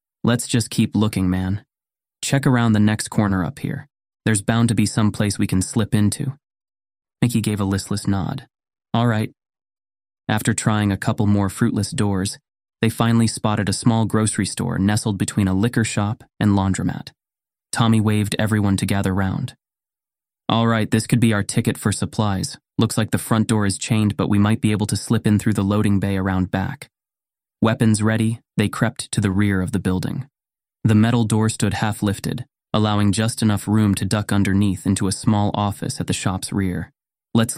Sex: male